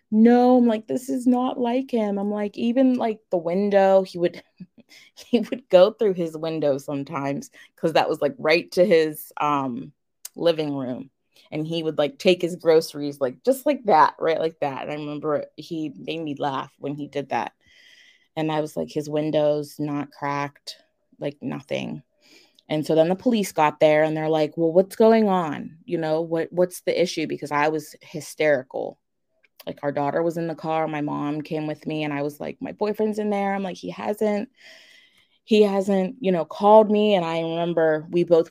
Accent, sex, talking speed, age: American, female, 200 wpm, 20-39